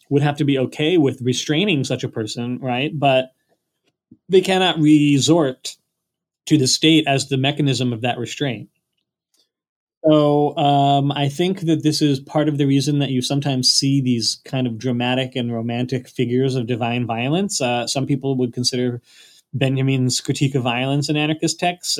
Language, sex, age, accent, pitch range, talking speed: English, male, 20-39, American, 125-150 Hz, 165 wpm